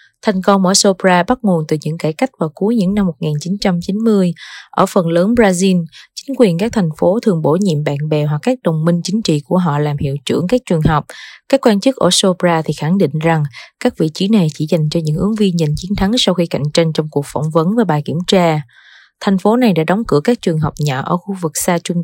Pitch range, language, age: 160-205 Hz, Vietnamese, 20-39